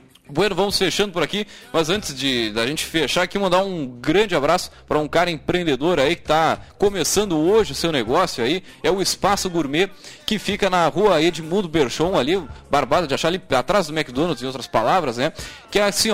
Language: Portuguese